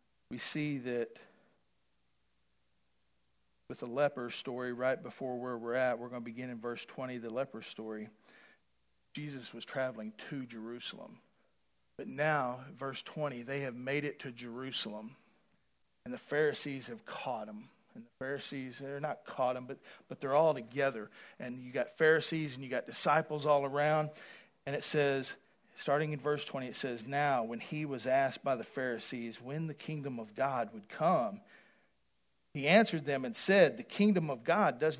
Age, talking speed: 40-59, 170 wpm